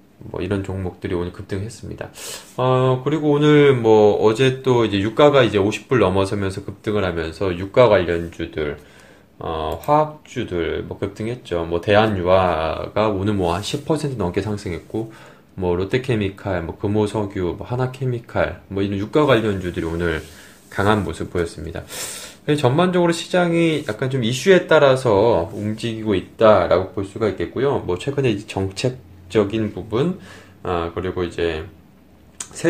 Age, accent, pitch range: 20-39, native, 90-125 Hz